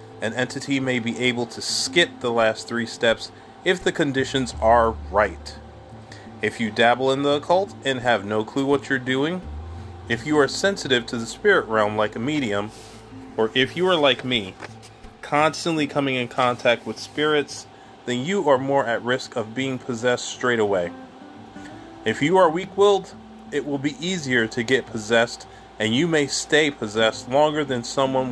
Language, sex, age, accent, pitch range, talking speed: English, male, 30-49, American, 110-140 Hz, 175 wpm